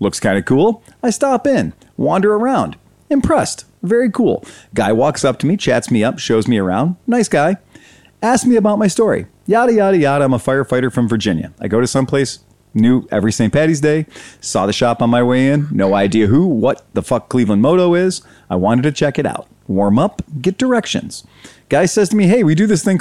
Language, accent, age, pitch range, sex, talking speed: English, American, 40-59, 115-185 Hz, male, 215 wpm